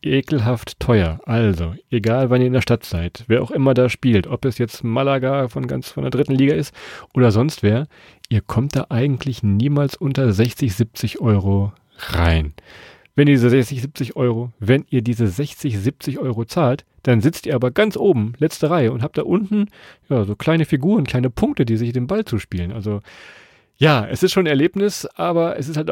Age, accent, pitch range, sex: 40-59, German, 110-140 Hz, male